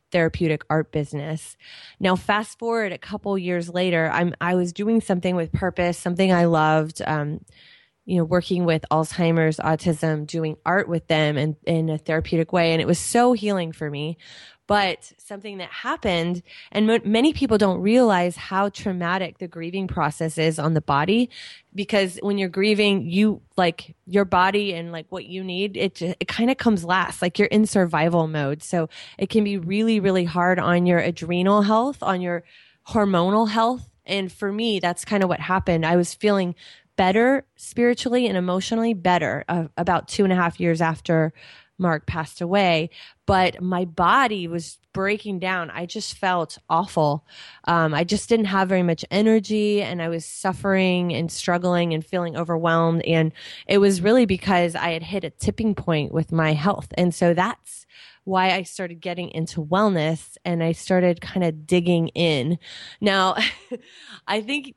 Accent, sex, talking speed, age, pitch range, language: American, female, 170 wpm, 20-39, 165-205 Hz, English